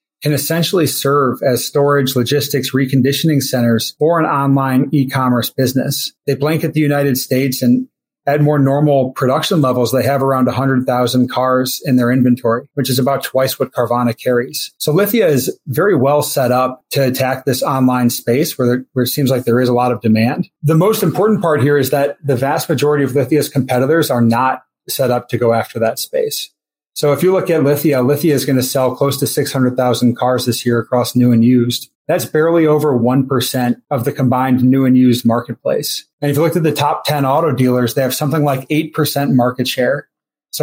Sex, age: male, 30-49